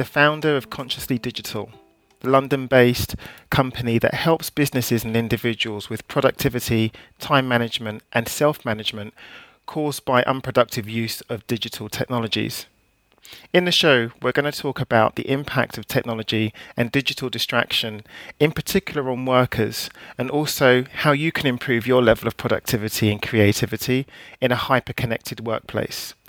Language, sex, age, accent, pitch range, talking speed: English, male, 40-59, British, 115-140 Hz, 140 wpm